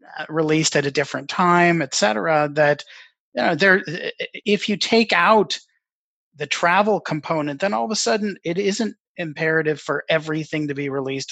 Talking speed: 165 wpm